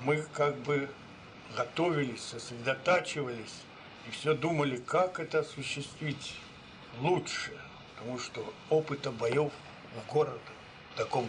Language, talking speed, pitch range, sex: Russian, 105 wpm, 130-160 Hz, male